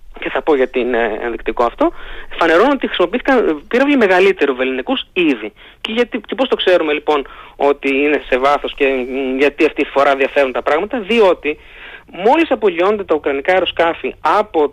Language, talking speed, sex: Greek, 160 wpm, male